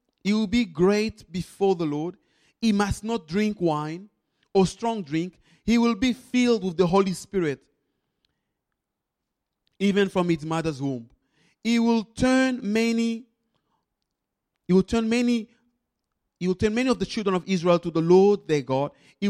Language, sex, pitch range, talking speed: English, male, 160-220 Hz, 160 wpm